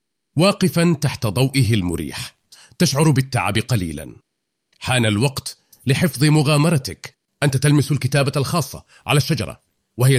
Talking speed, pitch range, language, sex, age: 105 wpm, 120-150 Hz, Arabic, male, 40-59